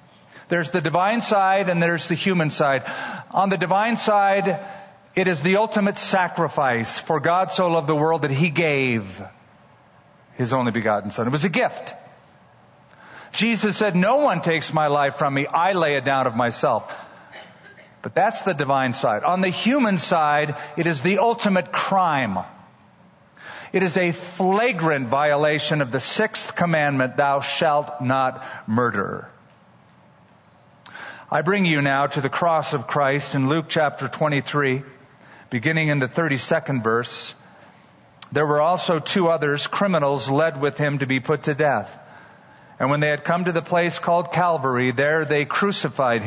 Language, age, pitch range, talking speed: English, 50-69, 140-180 Hz, 160 wpm